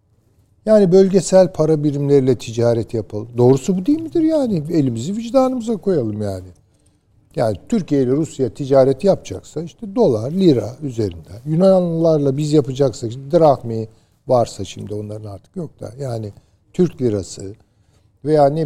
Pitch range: 110-170 Hz